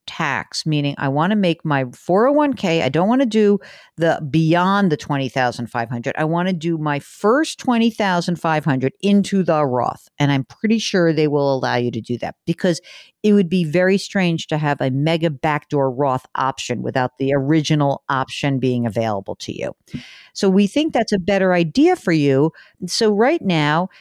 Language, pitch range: English, 140-190 Hz